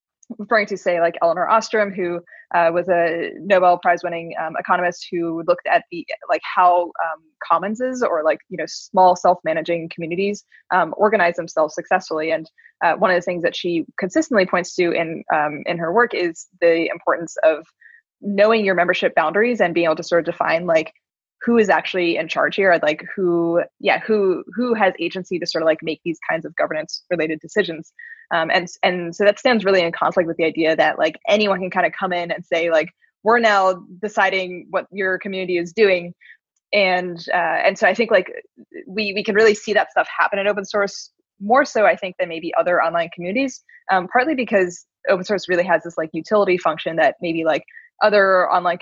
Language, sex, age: English, female, 20-39